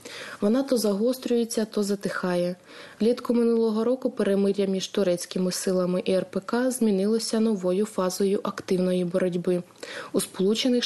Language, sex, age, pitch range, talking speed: Ukrainian, female, 20-39, 185-230 Hz, 115 wpm